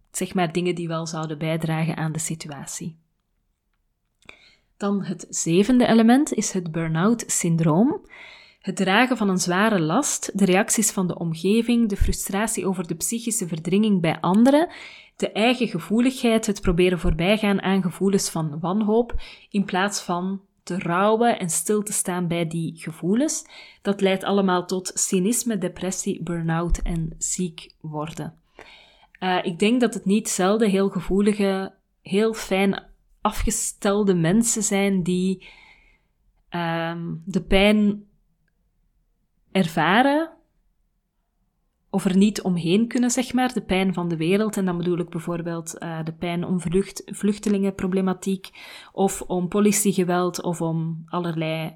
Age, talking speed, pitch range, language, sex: 30-49, 135 wpm, 175-210 Hz, Dutch, female